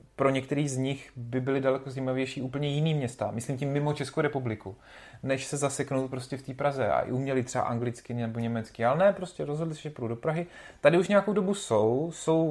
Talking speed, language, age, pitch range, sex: 210 wpm, Czech, 30-49, 115-145 Hz, male